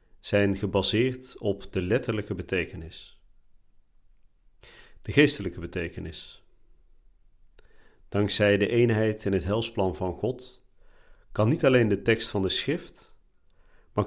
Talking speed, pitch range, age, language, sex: 110 wpm, 90-120 Hz, 40-59, Dutch, male